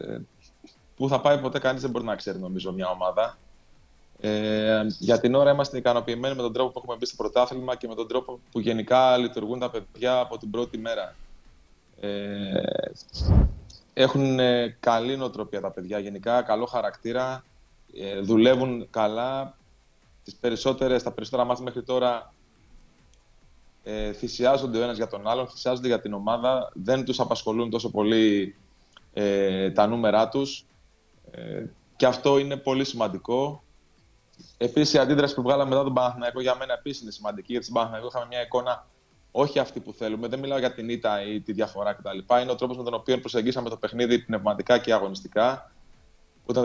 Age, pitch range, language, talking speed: 20-39, 105-130 Hz, Greek, 165 wpm